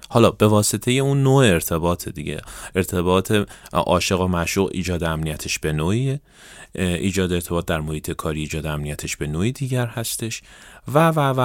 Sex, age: male, 30-49